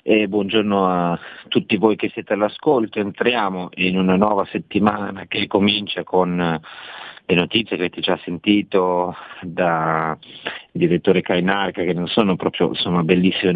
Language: Italian